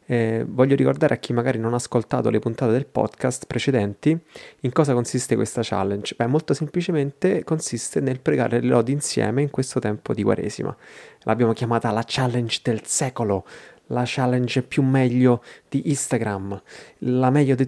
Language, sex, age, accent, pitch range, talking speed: Italian, male, 30-49, native, 115-140 Hz, 165 wpm